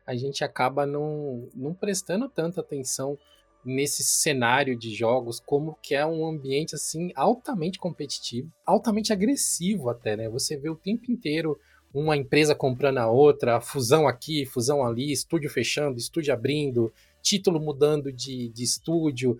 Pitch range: 130-175 Hz